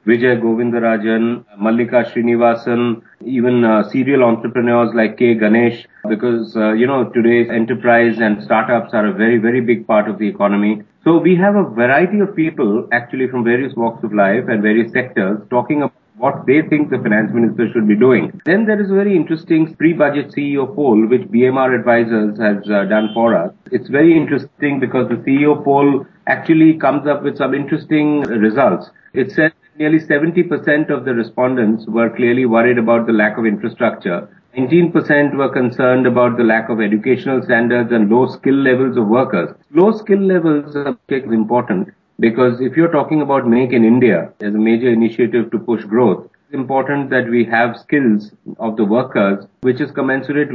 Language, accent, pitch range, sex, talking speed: English, Indian, 115-140 Hz, male, 180 wpm